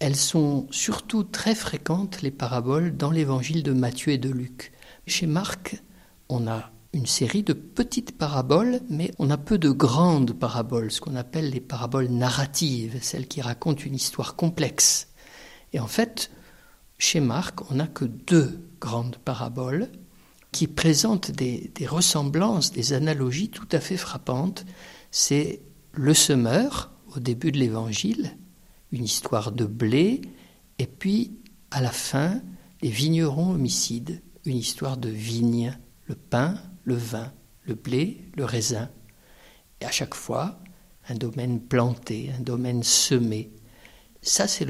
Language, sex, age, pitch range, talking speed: French, male, 60-79, 125-175 Hz, 145 wpm